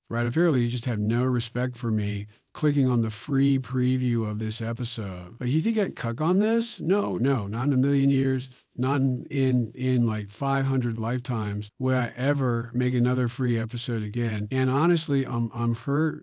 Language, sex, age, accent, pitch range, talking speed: English, male, 50-69, American, 115-135 Hz, 185 wpm